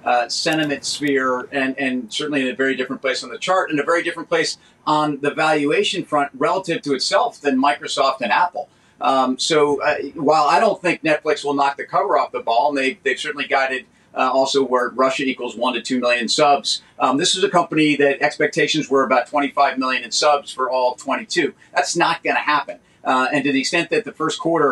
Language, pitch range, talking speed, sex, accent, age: English, 135-160 Hz, 215 wpm, male, American, 40-59